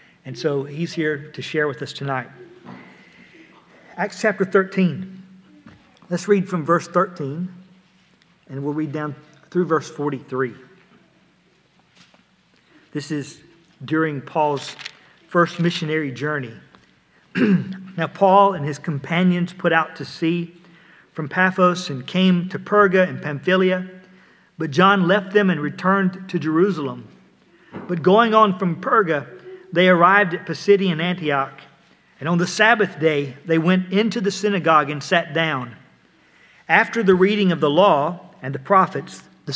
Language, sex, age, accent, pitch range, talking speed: English, male, 50-69, American, 155-190 Hz, 135 wpm